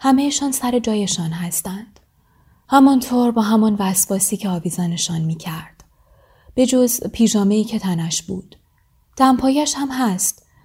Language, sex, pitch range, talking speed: Persian, female, 190-255 Hz, 125 wpm